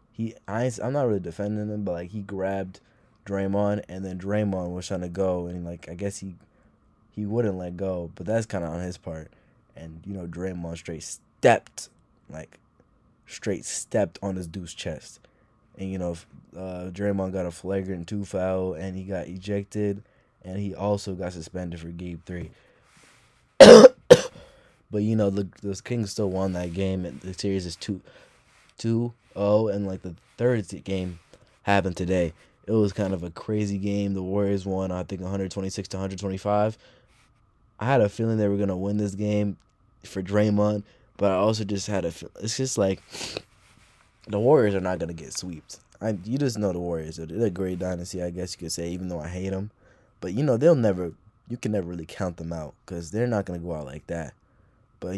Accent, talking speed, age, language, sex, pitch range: American, 200 wpm, 20-39, English, male, 90-105 Hz